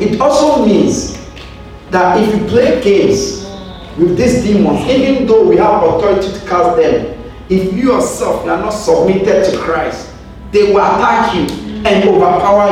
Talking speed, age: 155 wpm, 40-59